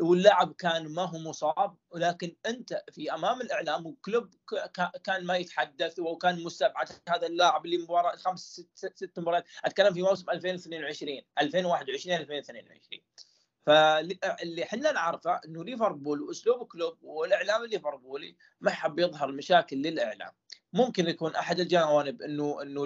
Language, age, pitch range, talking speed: Arabic, 20-39, 155-195 Hz, 130 wpm